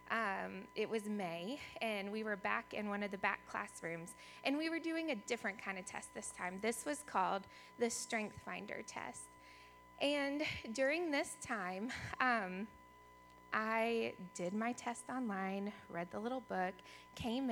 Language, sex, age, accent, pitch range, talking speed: English, female, 20-39, American, 190-260 Hz, 160 wpm